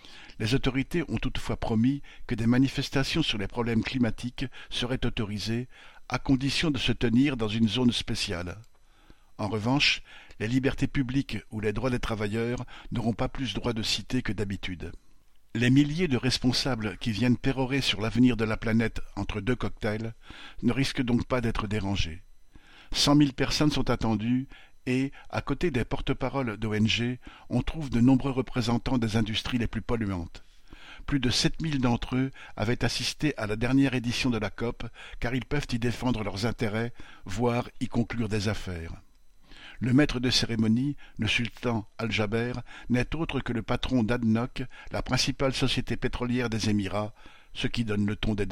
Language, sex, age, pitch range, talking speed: French, male, 50-69, 110-130 Hz, 170 wpm